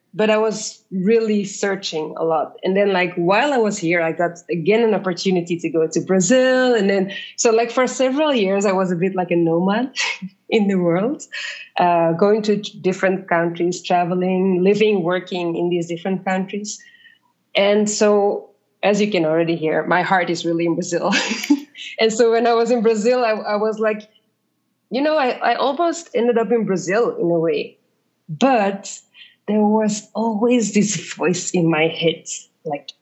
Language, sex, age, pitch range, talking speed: English, female, 20-39, 185-230 Hz, 180 wpm